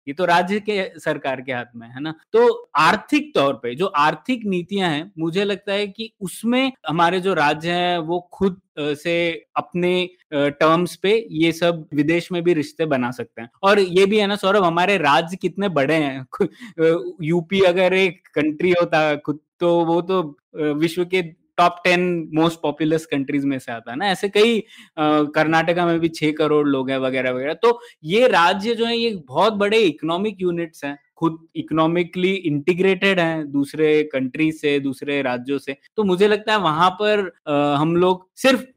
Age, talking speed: 20-39, 185 wpm